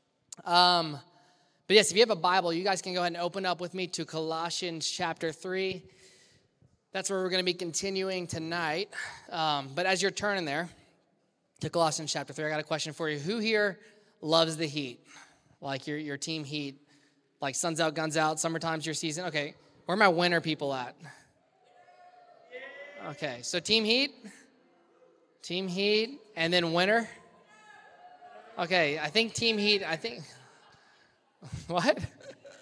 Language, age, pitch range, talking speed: English, 20-39, 155-195 Hz, 160 wpm